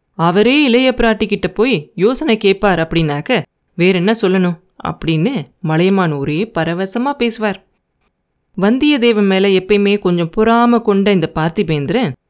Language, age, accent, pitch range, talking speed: Tamil, 30-49, native, 185-240 Hz, 115 wpm